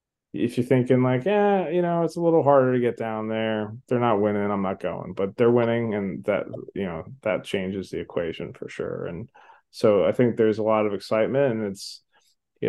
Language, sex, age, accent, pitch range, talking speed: English, male, 20-39, American, 105-125 Hz, 220 wpm